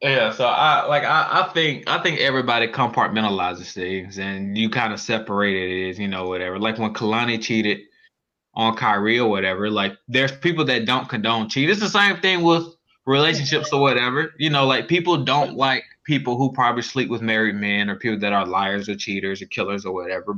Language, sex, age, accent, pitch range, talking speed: English, male, 20-39, American, 110-145 Hz, 205 wpm